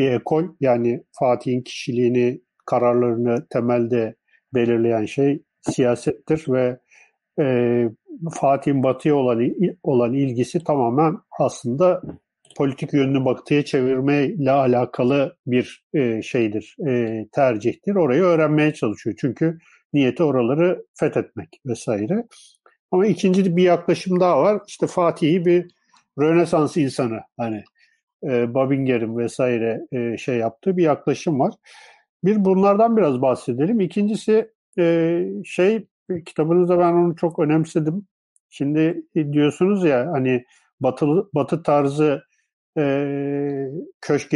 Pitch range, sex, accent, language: 125-175 Hz, male, native, Turkish